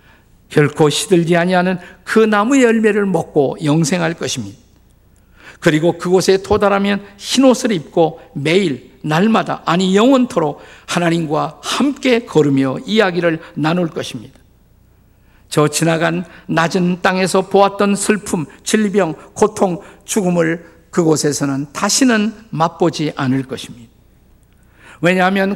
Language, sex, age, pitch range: Korean, male, 50-69, 150-205 Hz